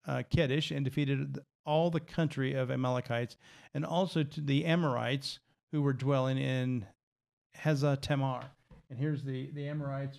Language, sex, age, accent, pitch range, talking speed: English, male, 40-59, American, 130-155 Hz, 145 wpm